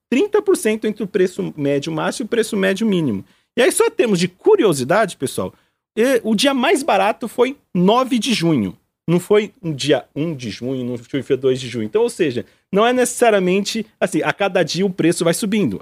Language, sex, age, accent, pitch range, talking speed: Portuguese, male, 40-59, Brazilian, 155-235 Hz, 200 wpm